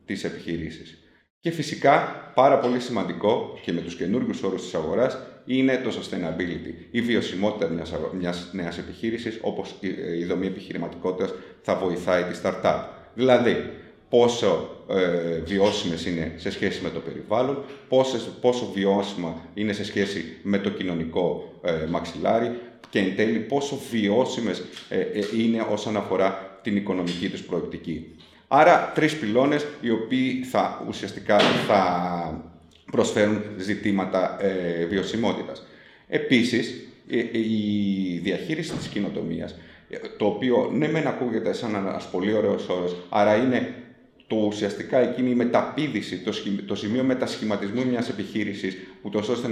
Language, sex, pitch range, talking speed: Greek, male, 90-120 Hz, 130 wpm